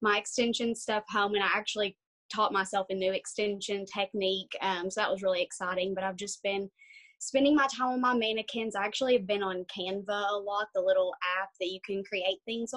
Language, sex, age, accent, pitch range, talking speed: English, female, 20-39, American, 195-240 Hz, 210 wpm